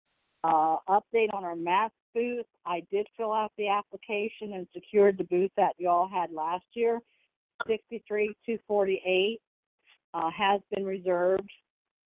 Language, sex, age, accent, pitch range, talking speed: English, female, 50-69, American, 180-205 Hz, 140 wpm